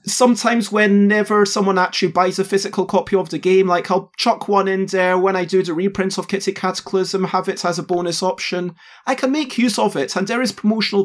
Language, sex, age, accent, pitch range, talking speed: English, male, 30-49, British, 180-225 Hz, 225 wpm